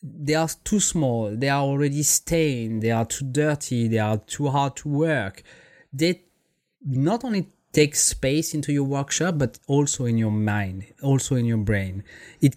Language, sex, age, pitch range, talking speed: English, male, 20-39, 115-150 Hz, 170 wpm